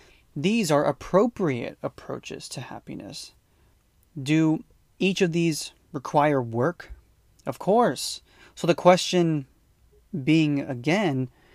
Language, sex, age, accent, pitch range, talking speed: English, male, 30-49, American, 130-160 Hz, 100 wpm